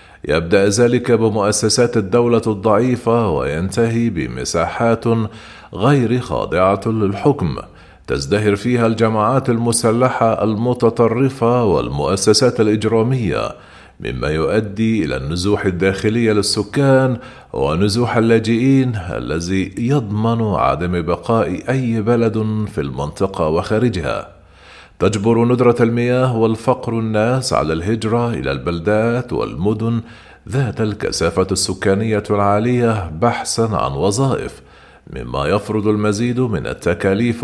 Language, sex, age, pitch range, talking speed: Arabic, male, 40-59, 105-120 Hz, 90 wpm